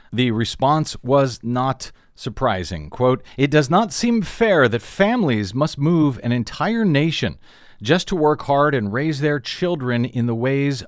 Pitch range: 110-140 Hz